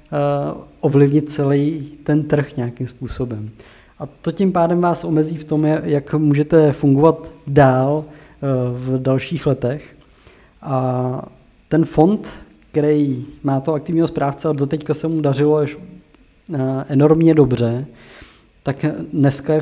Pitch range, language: 130-150 Hz, Czech